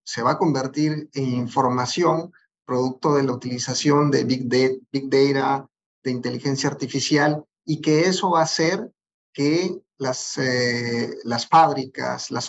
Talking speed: 135 wpm